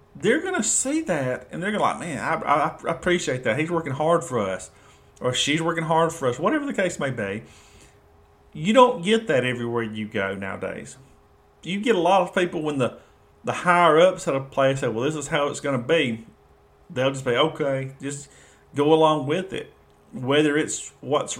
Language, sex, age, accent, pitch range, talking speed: English, male, 40-59, American, 125-165 Hz, 200 wpm